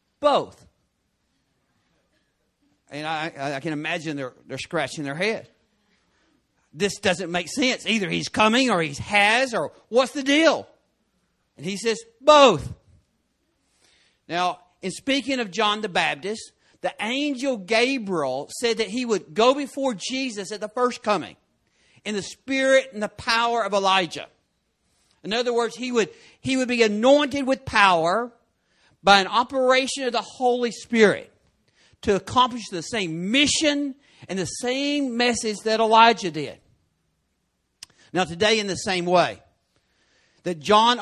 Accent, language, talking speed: American, English, 140 wpm